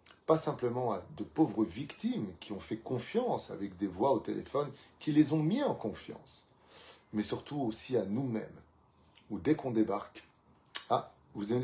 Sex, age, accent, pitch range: male, 30-49, French, 100-125 Hz